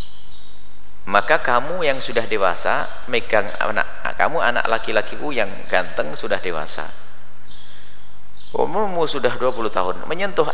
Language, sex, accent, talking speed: Indonesian, male, native, 110 wpm